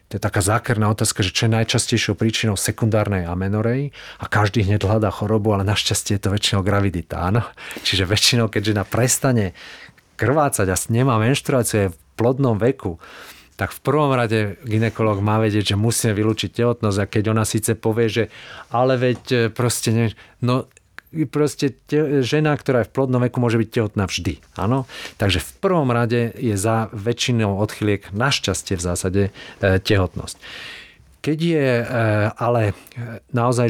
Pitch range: 100-120 Hz